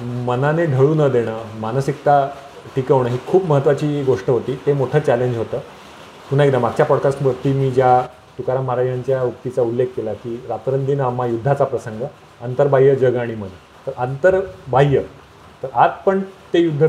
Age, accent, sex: 30-49, native, male